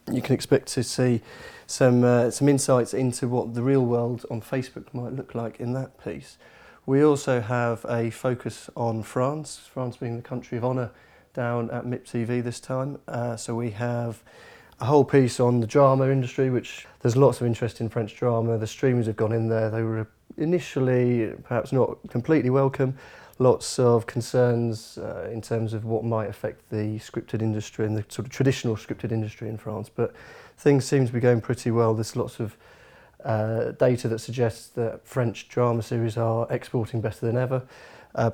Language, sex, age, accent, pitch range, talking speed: English, male, 30-49, British, 115-130 Hz, 190 wpm